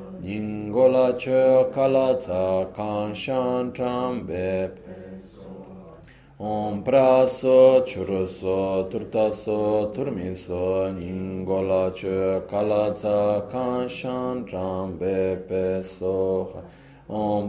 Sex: male